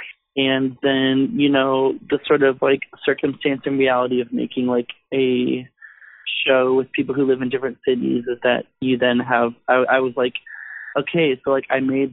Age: 20-39